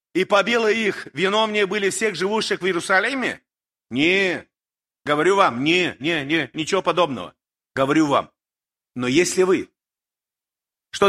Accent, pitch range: native, 185-240 Hz